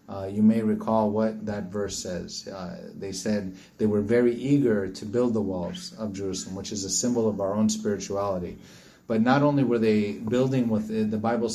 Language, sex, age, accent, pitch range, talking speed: English, male, 30-49, American, 105-120 Hz, 200 wpm